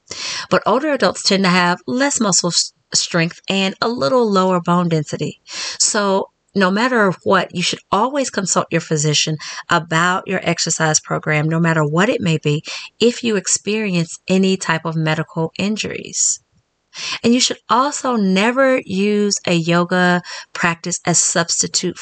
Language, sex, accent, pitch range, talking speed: English, female, American, 160-195 Hz, 145 wpm